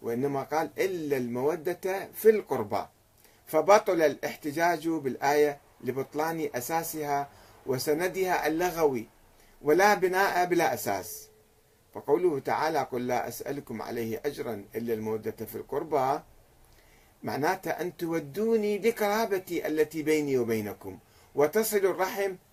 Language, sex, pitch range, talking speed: Arabic, male, 125-195 Hz, 100 wpm